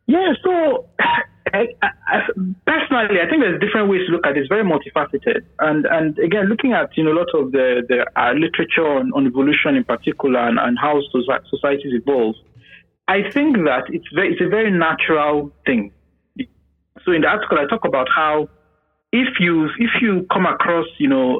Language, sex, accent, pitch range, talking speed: English, male, Nigerian, 140-230 Hz, 190 wpm